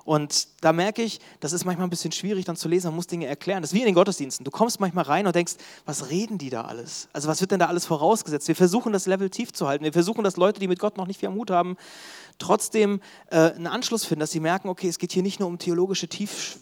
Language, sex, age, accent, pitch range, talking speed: German, male, 30-49, German, 165-195 Hz, 280 wpm